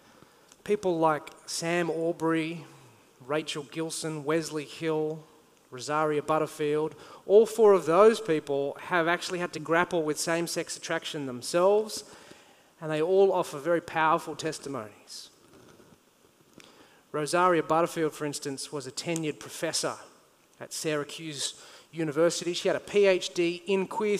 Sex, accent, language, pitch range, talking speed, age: male, Australian, English, 155-190 Hz, 120 wpm, 30-49